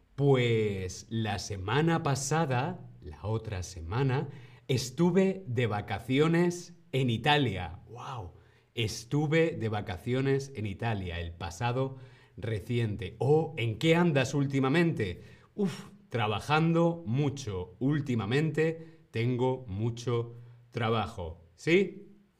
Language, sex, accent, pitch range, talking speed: Spanish, male, Spanish, 110-155 Hz, 90 wpm